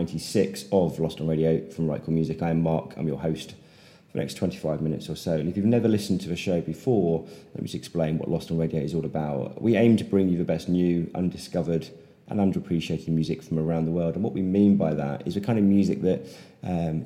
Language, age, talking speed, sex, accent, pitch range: English, 30-49, 245 wpm, male, British, 80-95 Hz